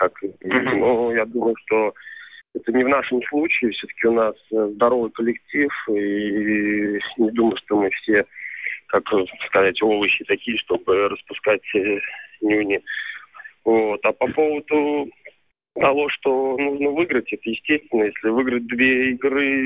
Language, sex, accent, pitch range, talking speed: Russian, male, native, 105-125 Hz, 120 wpm